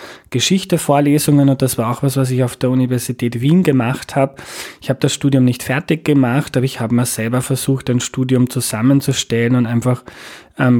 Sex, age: male, 20-39